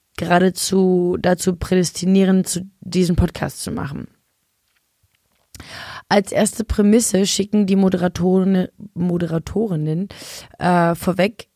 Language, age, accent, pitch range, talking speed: German, 20-39, German, 175-205 Hz, 90 wpm